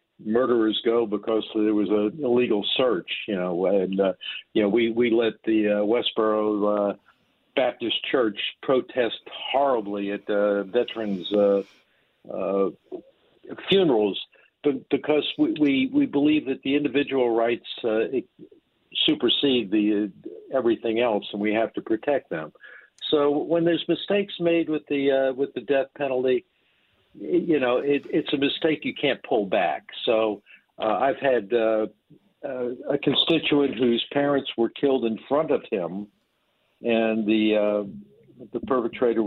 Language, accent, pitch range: English, American, 105-140 Hz